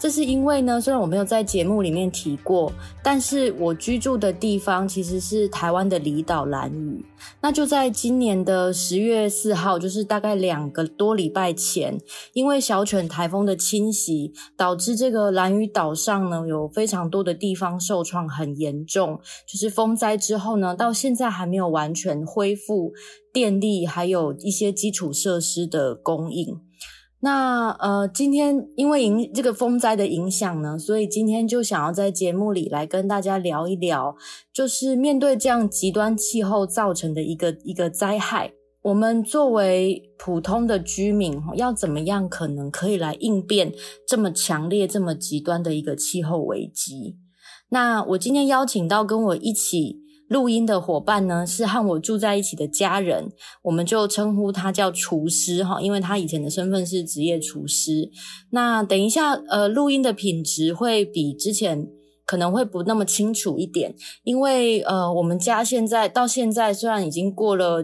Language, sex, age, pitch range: Chinese, female, 20-39, 175-220 Hz